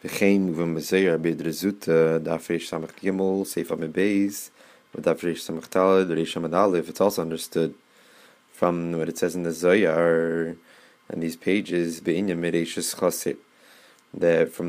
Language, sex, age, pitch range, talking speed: English, male, 20-39, 85-95 Hz, 60 wpm